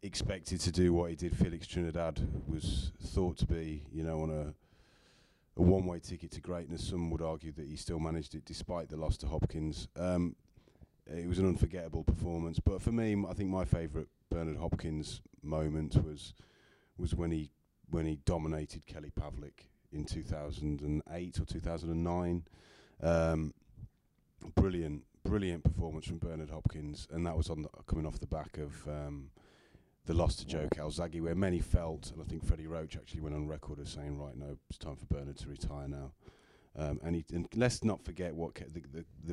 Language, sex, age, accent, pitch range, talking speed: English, male, 30-49, British, 80-90 Hz, 190 wpm